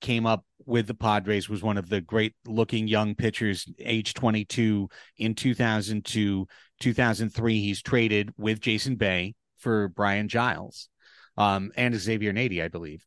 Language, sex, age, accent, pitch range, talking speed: English, male, 30-49, American, 105-155 Hz, 145 wpm